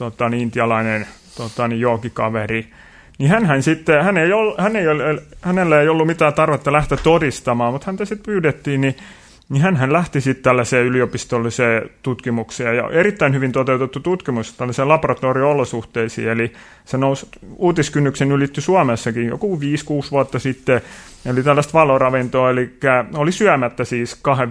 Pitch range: 125-150 Hz